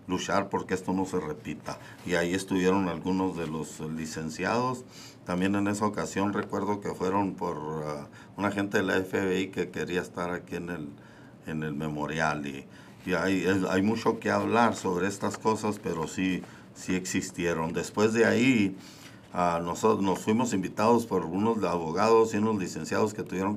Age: 50-69